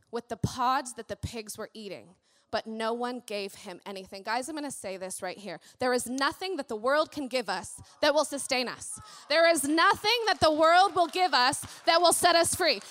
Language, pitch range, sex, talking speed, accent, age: English, 225-315 Hz, female, 230 wpm, American, 20-39